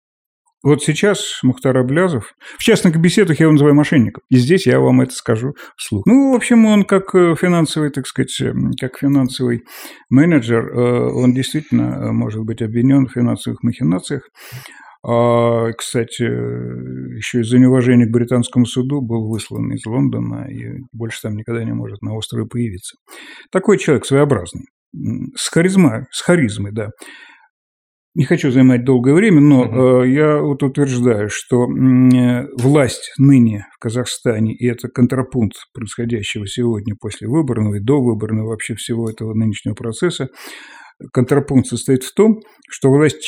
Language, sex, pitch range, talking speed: Russian, male, 115-140 Hz, 145 wpm